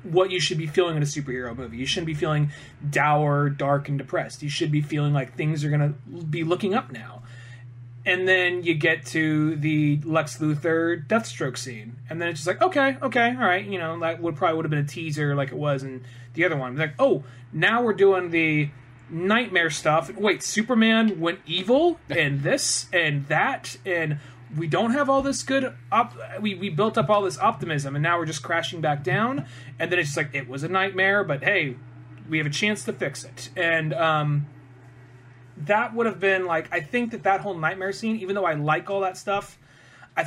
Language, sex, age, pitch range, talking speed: English, male, 30-49, 140-185 Hz, 215 wpm